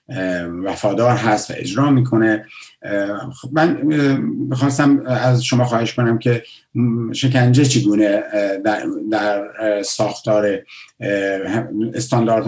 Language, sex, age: Persian, male, 50-69